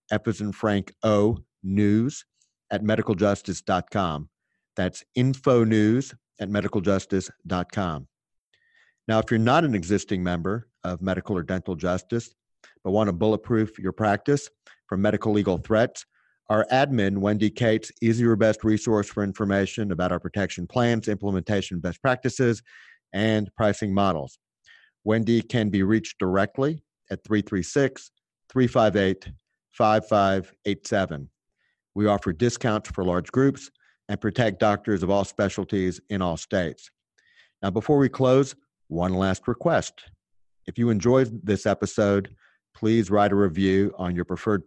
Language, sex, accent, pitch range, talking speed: English, male, American, 95-110 Hz, 130 wpm